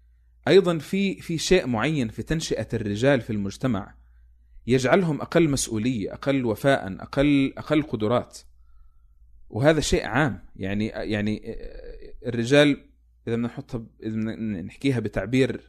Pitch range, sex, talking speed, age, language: 100-135 Hz, male, 115 wpm, 30-49, Arabic